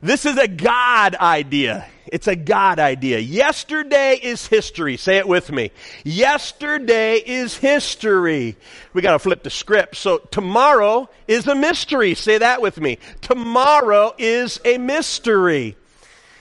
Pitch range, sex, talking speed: 175-255 Hz, male, 140 wpm